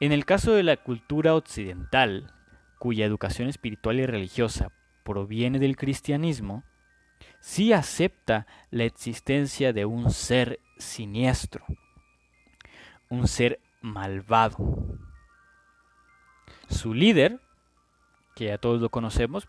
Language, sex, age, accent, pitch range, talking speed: Spanish, male, 20-39, Mexican, 105-135 Hz, 100 wpm